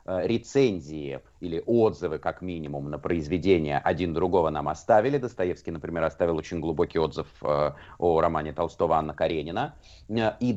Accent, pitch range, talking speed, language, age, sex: native, 90-120 Hz, 130 wpm, Russian, 30-49, male